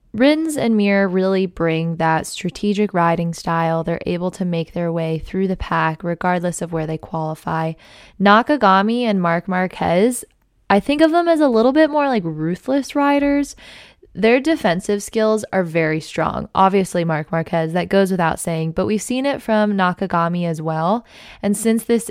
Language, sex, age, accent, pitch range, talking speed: English, female, 20-39, American, 165-200 Hz, 170 wpm